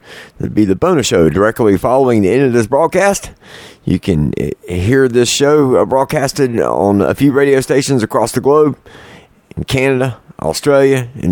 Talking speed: 160 wpm